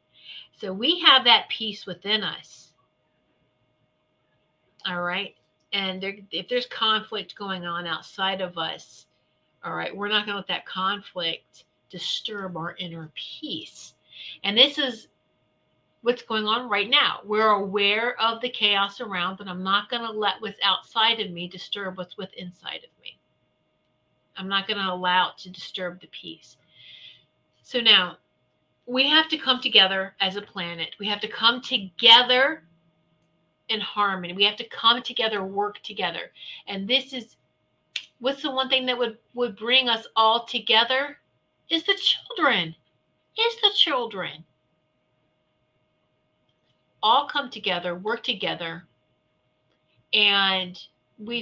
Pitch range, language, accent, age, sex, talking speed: 185-240 Hz, English, American, 50-69, female, 140 wpm